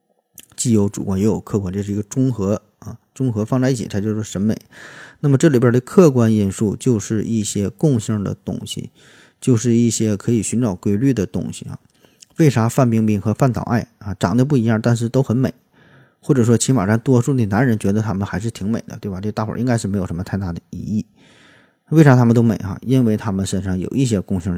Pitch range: 105-125 Hz